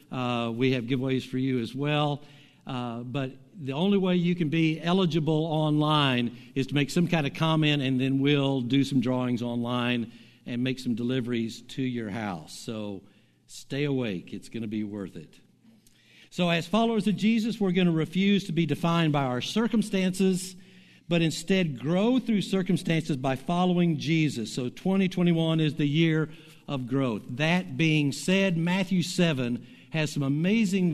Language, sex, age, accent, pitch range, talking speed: English, male, 60-79, American, 135-185 Hz, 165 wpm